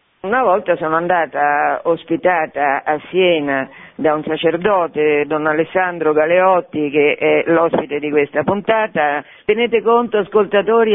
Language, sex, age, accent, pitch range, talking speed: Italian, female, 50-69, native, 150-200 Hz, 120 wpm